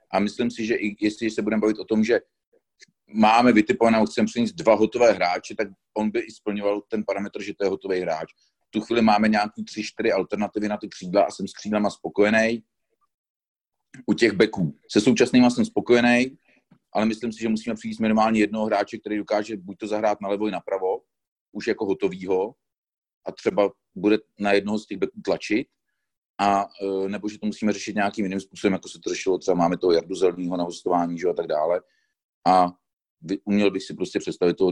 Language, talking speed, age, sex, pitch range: Czech, 200 wpm, 40-59, male, 95-110 Hz